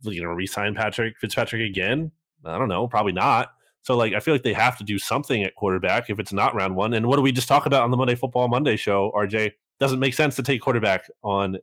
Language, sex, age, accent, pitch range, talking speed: English, male, 30-49, American, 100-130 Hz, 255 wpm